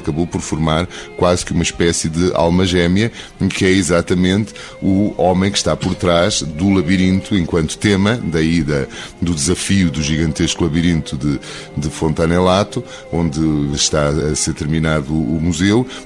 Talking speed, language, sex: 155 wpm, Portuguese, male